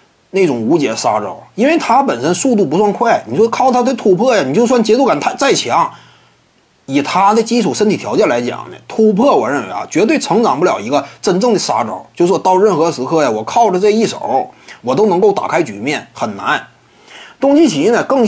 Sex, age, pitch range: male, 30-49, 185-245 Hz